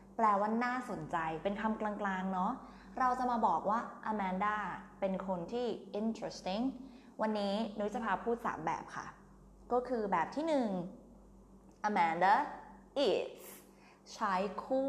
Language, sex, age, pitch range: Thai, female, 20-39, 185-235 Hz